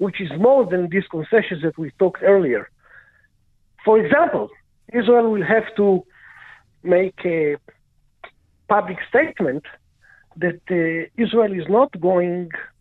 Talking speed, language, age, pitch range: 120 wpm, English, 50-69, 165-215 Hz